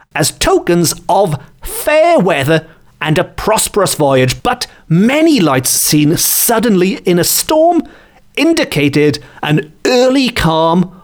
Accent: British